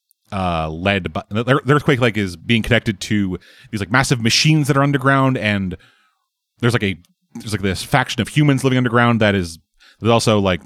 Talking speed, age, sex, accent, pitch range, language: 195 wpm, 30-49, male, American, 100-140 Hz, English